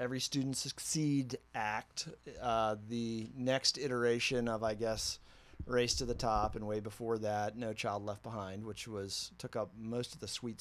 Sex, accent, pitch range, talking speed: male, American, 105-130 Hz, 175 wpm